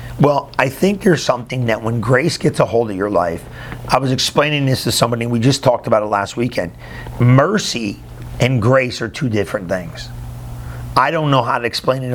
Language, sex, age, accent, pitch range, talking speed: English, male, 50-69, American, 115-130 Hz, 200 wpm